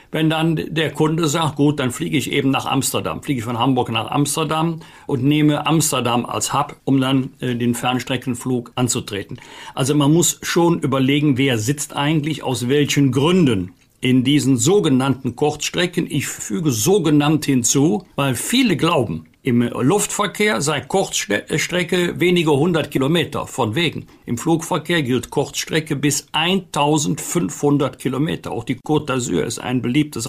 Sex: male